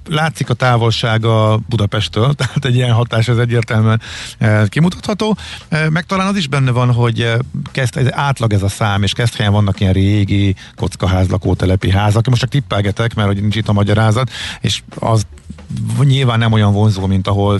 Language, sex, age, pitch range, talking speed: Hungarian, male, 50-69, 95-125 Hz, 165 wpm